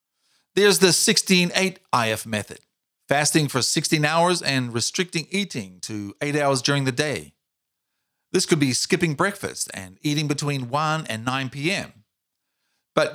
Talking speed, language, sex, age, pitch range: 140 wpm, English, male, 50-69, 125-165 Hz